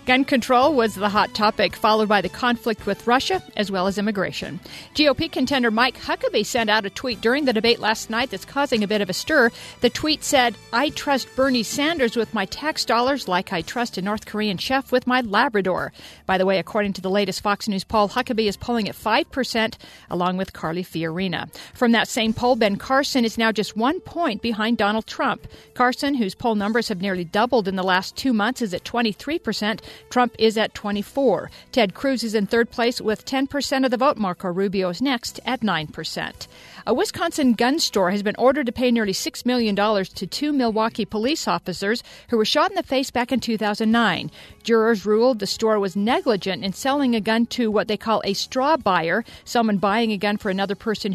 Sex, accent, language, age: female, American, English, 50-69